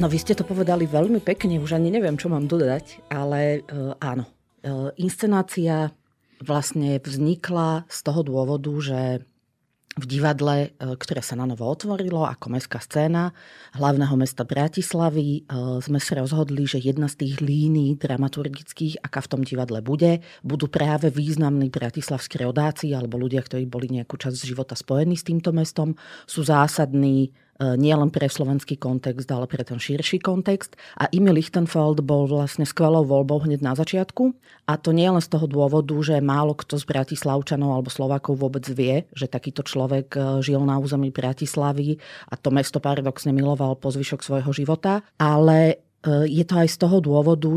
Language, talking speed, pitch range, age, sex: Slovak, 165 wpm, 135-160 Hz, 40-59, female